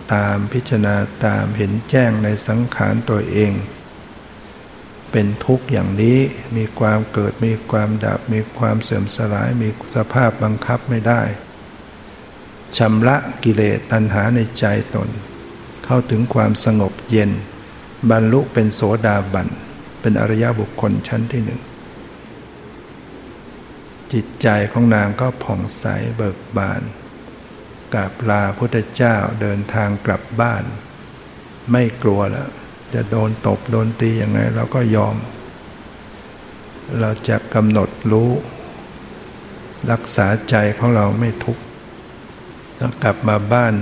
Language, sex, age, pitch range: Thai, male, 60-79, 105-120 Hz